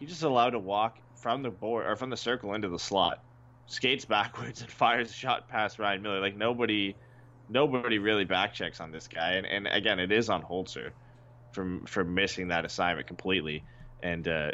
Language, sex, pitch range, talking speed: English, male, 95-120 Hz, 195 wpm